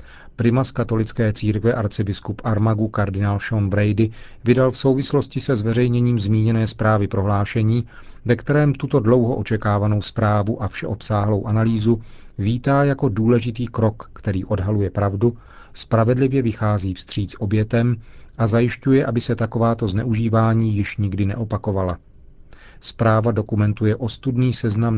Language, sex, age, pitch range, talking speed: Czech, male, 40-59, 105-120 Hz, 120 wpm